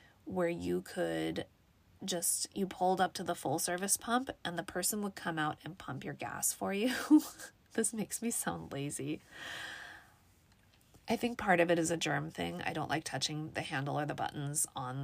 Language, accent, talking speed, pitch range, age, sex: English, American, 190 wpm, 145-225 Hz, 20-39, female